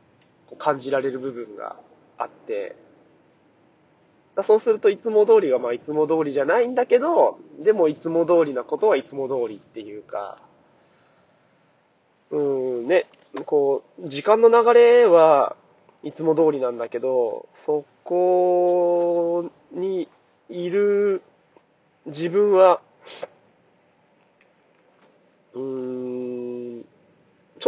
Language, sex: Japanese, male